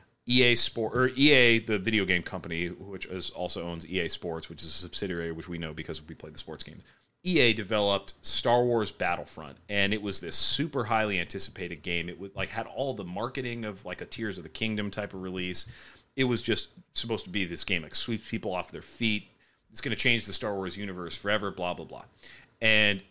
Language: English